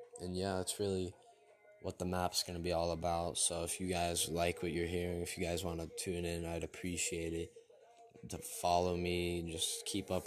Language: English